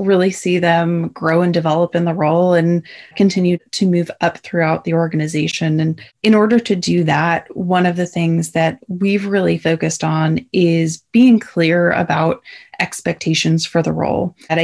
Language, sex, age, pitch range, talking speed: English, female, 20-39, 165-180 Hz, 170 wpm